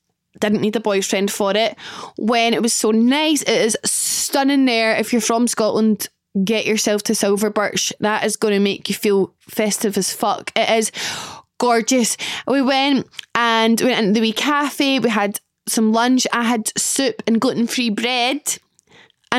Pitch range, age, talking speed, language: 220-270 Hz, 10-29, 175 wpm, English